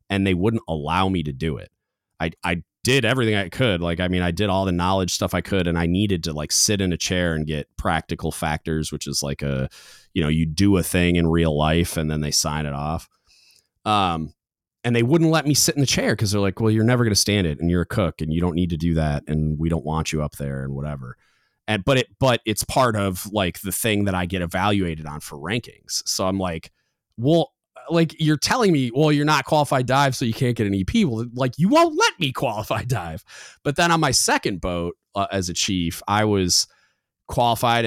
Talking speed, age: 245 wpm, 30-49